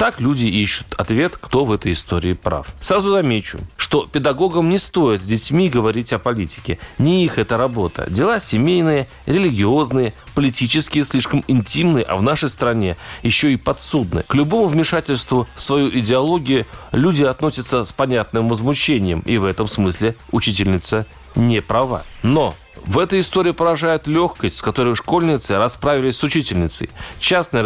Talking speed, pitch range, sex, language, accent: 150 wpm, 110-150 Hz, male, Russian, native